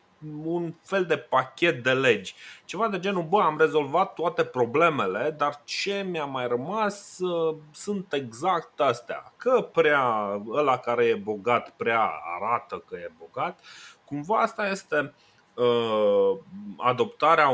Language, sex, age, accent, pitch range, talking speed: Romanian, male, 30-49, native, 115-155 Hz, 125 wpm